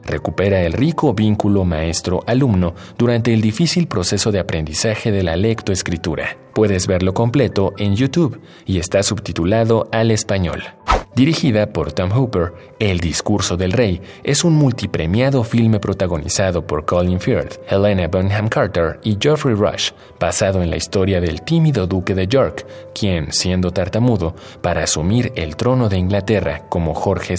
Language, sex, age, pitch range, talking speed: Spanish, male, 30-49, 95-145 Hz, 145 wpm